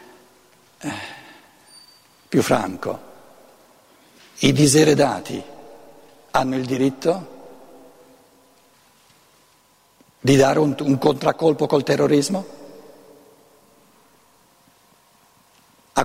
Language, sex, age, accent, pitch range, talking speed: Italian, male, 60-79, native, 145-210 Hz, 60 wpm